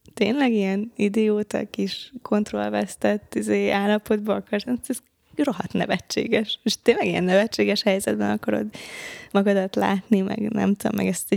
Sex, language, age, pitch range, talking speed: female, Hungarian, 20-39, 185-220 Hz, 125 wpm